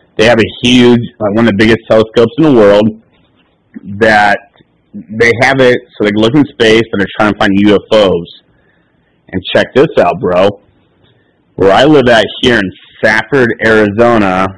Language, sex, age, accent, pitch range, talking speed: English, male, 30-49, American, 105-125 Hz, 175 wpm